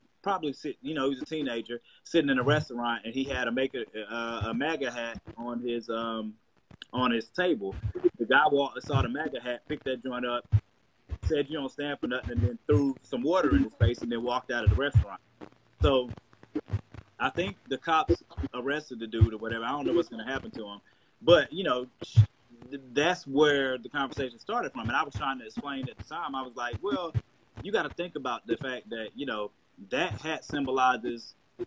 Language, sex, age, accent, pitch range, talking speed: English, male, 20-39, American, 120-160 Hz, 210 wpm